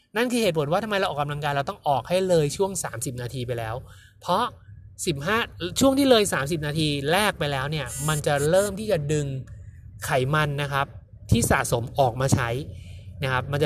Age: 20-39